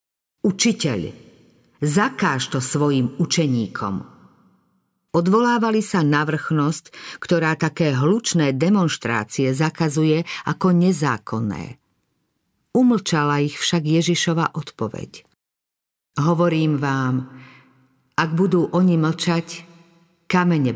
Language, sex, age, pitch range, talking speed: Slovak, female, 50-69, 145-180 Hz, 80 wpm